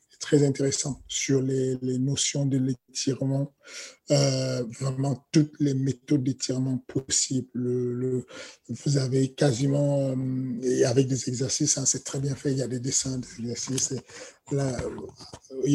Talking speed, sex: 140 wpm, male